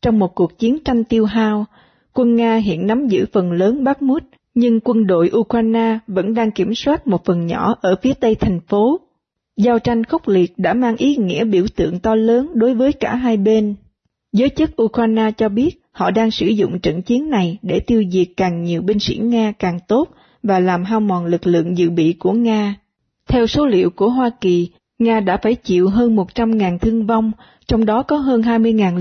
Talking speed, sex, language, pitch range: 205 wpm, female, Vietnamese, 190-240 Hz